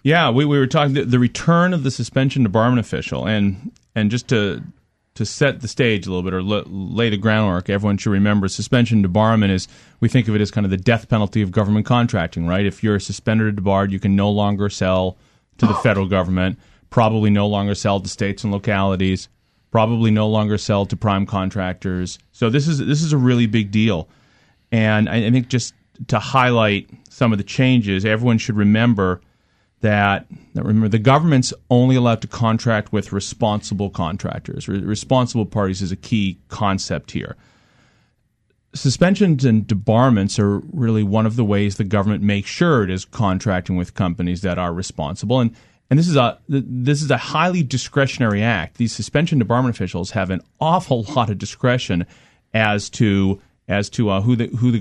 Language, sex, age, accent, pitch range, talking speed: English, male, 30-49, American, 100-125 Hz, 185 wpm